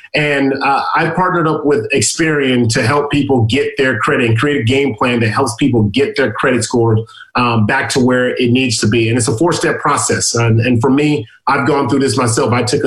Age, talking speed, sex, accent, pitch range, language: 30-49, 235 wpm, male, American, 120-150 Hz, English